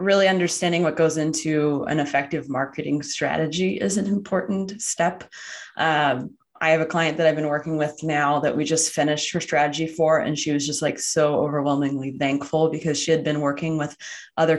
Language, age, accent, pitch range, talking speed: English, 20-39, American, 145-165 Hz, 190 wpm